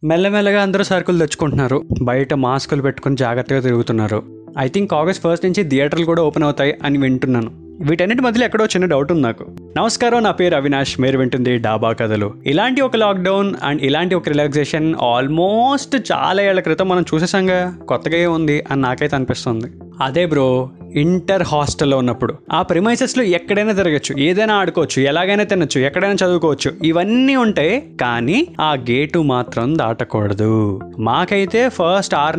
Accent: native